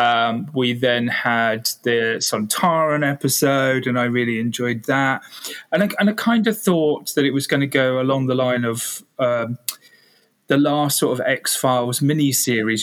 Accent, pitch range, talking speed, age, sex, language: British, 120-145 Hz, 165 wpm, 30-49, male, English